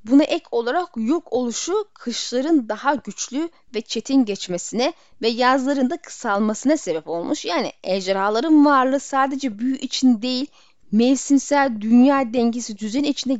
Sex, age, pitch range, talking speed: female, 10-29, 210-275 Hz, 130 wpm